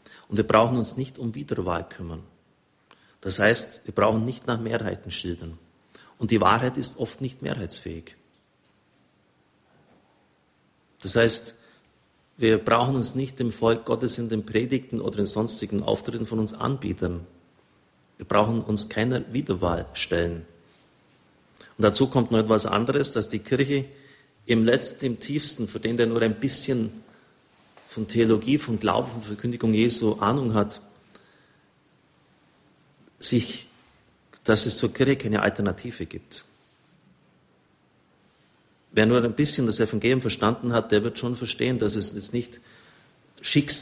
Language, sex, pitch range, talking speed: German, male, 105-120 Hz, 140 wpm